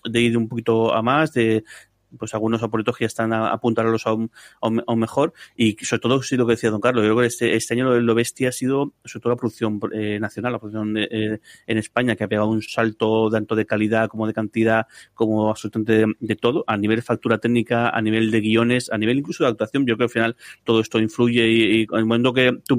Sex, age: male, 30-49